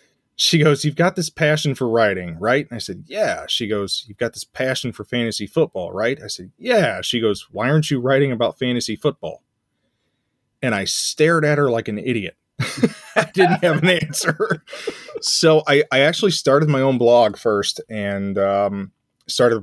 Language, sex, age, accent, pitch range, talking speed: English, male, 30-49, American, 110-140 Hz, 185 wpm